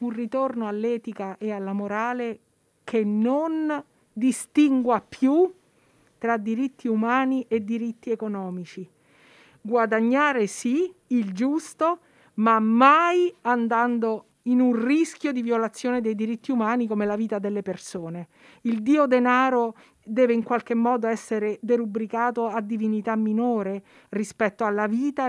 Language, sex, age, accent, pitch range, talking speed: Italian, female, 50-69, native, 215-250 Hz, 120 wpm